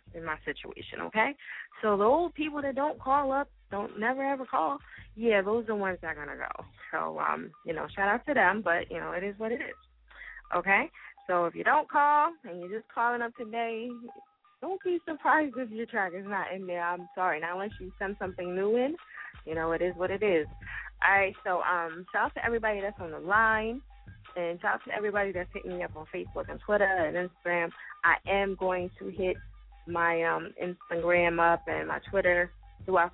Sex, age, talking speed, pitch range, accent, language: female, 20-39, 215 wpm, 175-230 Hz, American, English